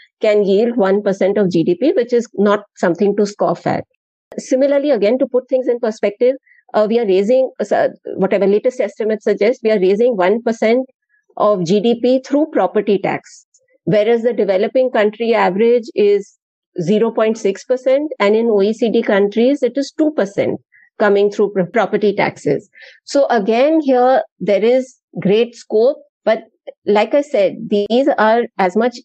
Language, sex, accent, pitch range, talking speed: English, female, Indian, 200-255 Hz, 145 wpm